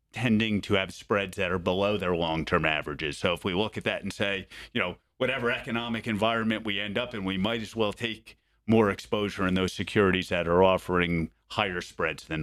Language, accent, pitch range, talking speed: English, American, 95-110 Hz, 215 wpm